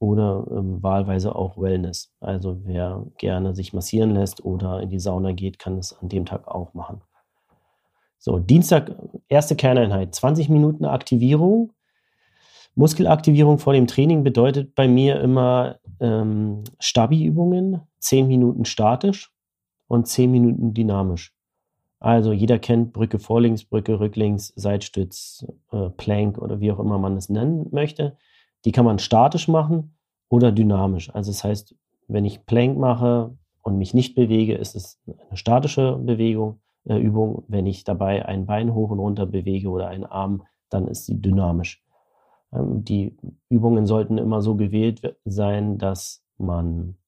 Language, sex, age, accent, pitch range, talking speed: German, male, 30-49, German, 95-125 Hz, 150 wpm